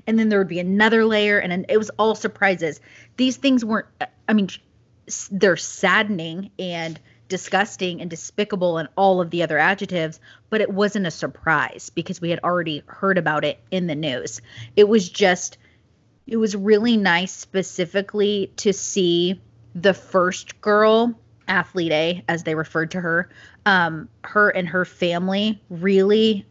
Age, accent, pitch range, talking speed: 30-49, American, 170-205 Hz, 160 wpm